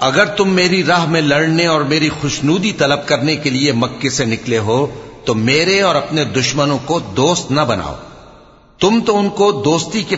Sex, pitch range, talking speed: male, 120-180 Hz, 190 wpm